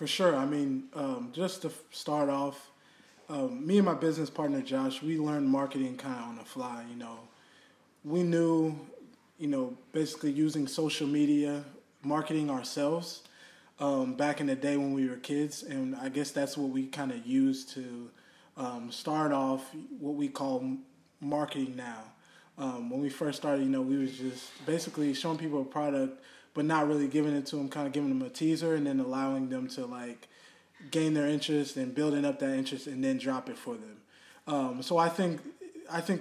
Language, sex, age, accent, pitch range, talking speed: English, male, 20-39, American, 140-170 Hz, 195 wpm